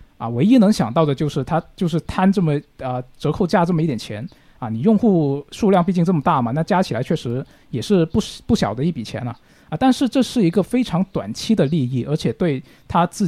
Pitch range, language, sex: 140-195 Hz, Chinese, male